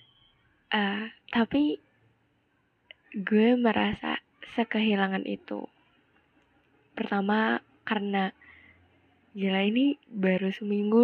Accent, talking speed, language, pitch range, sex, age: native, 65 wpm, Indonesian, 210-255 Hz, female, 10-29